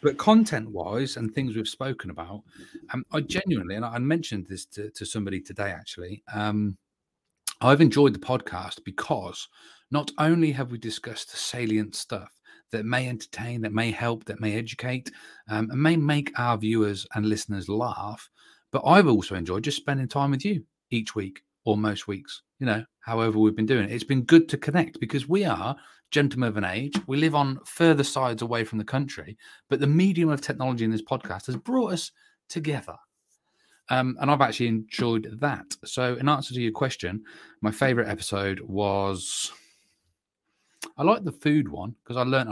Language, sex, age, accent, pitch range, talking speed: English, male, 30-49, British, 105-140 Hz, 180 wpm